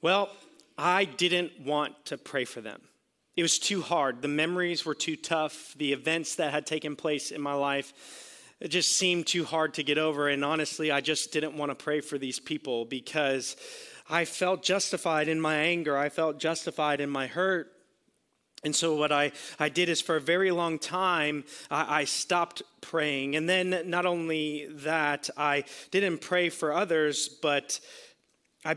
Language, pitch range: English, 140-165 Hz